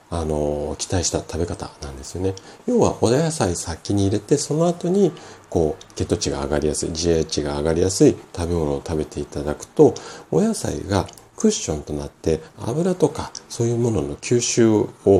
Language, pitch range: Japanese, 75-115 Hz